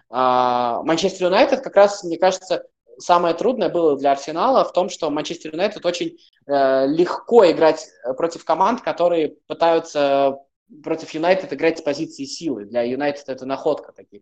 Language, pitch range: Russian, 125-170 Hz